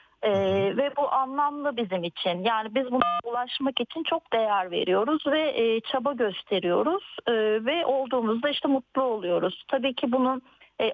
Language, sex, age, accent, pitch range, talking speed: Turkish, female, 40-59, native, 215-275 Hz, 155 wpm